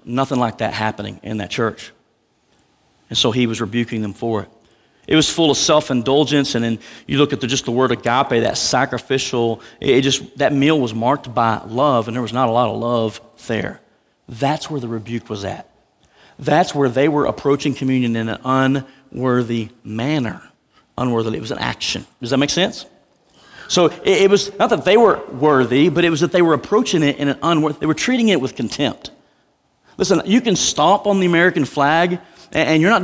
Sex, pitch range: male, 120-155 Hz